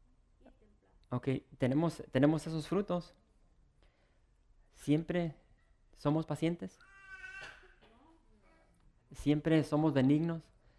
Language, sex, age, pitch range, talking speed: English, male, 20-39, 120-160 Hz, 60 wpm